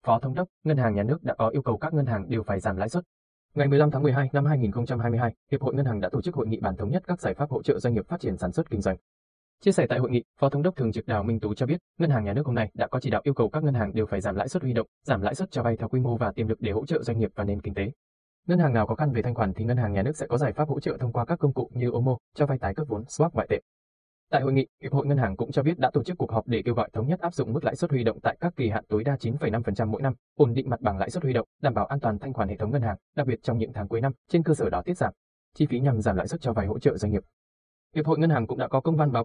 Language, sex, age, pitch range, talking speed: Vietnamese, male, 20-39, 110-145 Hz, 350 wpm